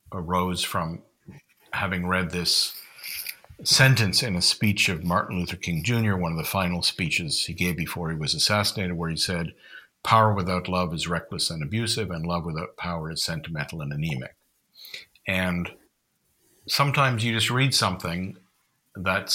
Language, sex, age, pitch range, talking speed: English, male, 50-69, 90-110 Hz, 155 wpm